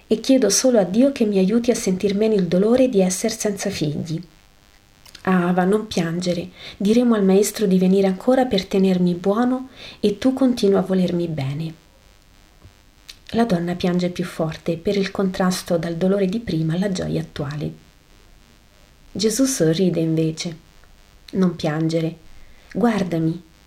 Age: 40-59